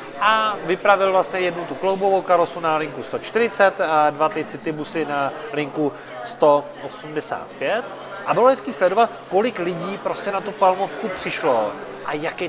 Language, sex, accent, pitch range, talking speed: Czech, male, native, 175-200 Hz, 145 wpm